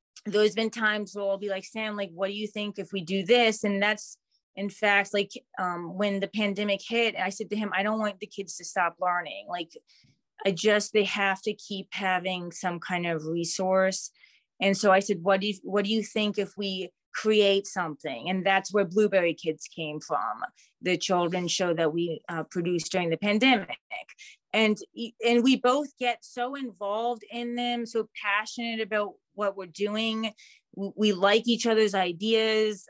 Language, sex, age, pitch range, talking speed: English, female, 30-49, 190-220 Hz, 190 wpm